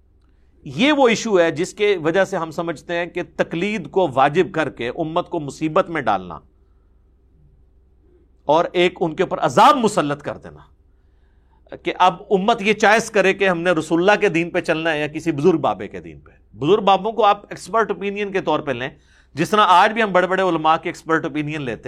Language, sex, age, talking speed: Urdu, male, 50-69, 205 wpm